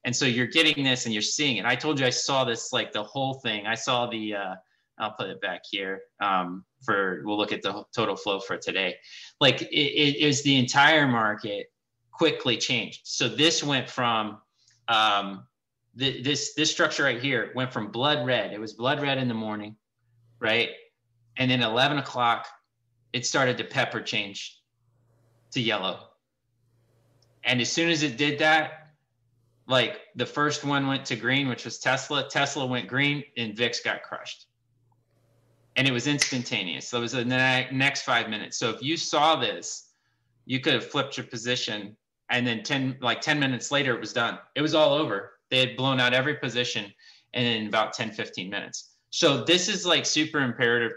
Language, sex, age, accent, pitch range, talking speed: English, male, 30-49, American, 115-140 Hz, 185 wpm